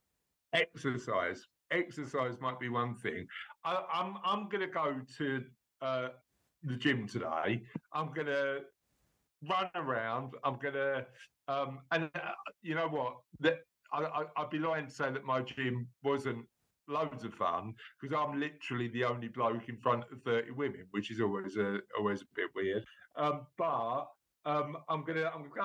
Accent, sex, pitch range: British, male, 125-155 Hz